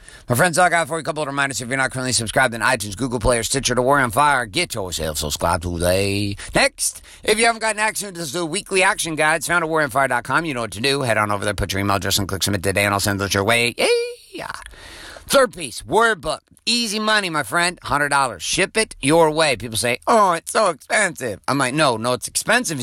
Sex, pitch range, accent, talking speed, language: male, 105-160 Hz, American, 245 wpm, English